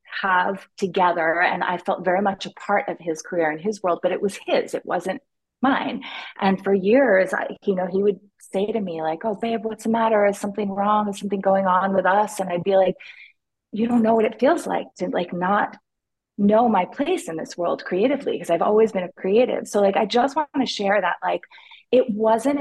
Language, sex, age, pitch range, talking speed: English, female, 30-49, 180-220 Hz, 230 wpm